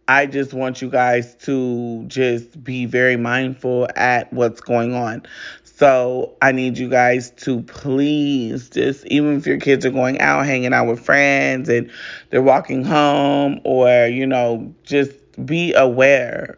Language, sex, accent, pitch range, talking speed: English, male, American, 125-135 Hz, 155 wpm